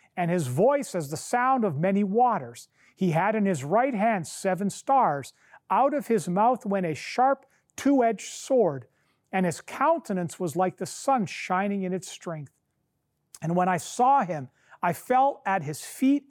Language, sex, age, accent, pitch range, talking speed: English, male, 40-59, American, 160-220 Hz, 175 wpm